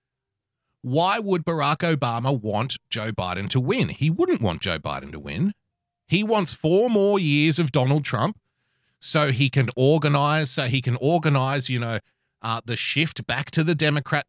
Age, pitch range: 30-49, 125-160 Hz